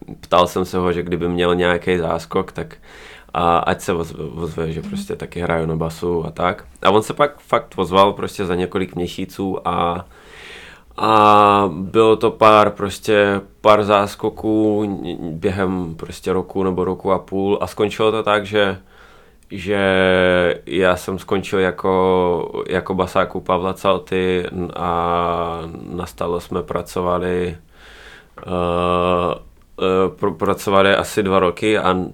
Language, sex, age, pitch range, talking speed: Czech, male, 20-39, 90-105 Hz, 135 wpm